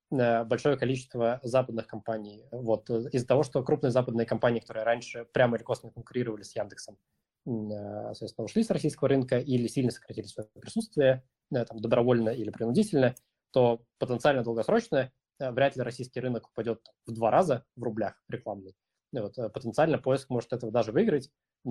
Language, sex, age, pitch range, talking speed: Russian, male, 20-39, 115-130 Hz, 150 wpm